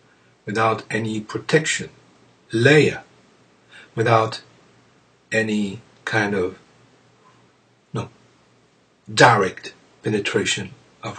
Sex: male